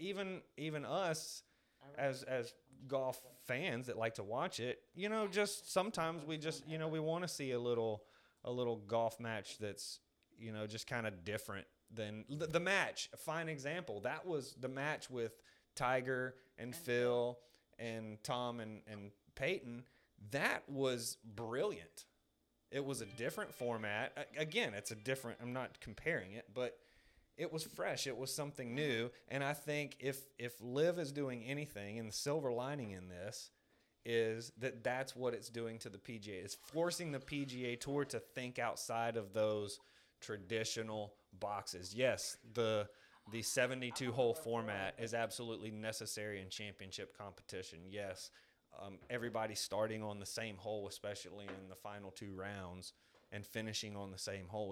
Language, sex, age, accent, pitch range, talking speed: English, male, 30-49, American, 105-135 Hz, 160 wpm